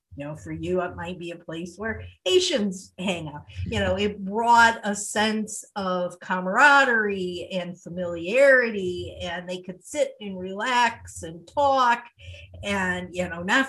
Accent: American